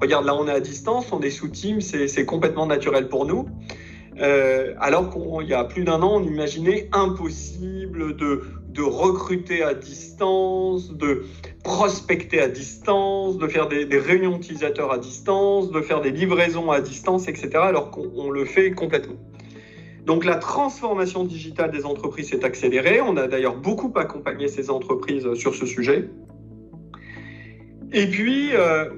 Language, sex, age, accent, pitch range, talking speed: French, male, 40-59, French, 140-185 Hz, 155 wpm